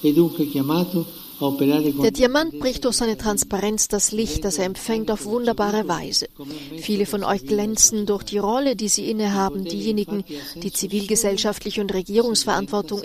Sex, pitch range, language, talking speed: female, 185-220 Hz, German, 135 wpm